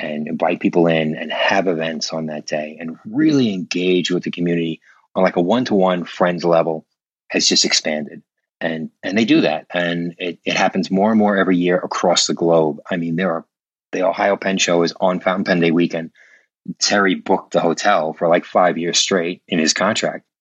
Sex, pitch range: male, 80-95 Hz